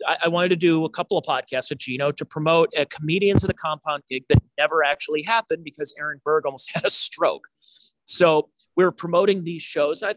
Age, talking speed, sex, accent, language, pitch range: 30-49, 210 wpm, male, American, English, 150-205 Hz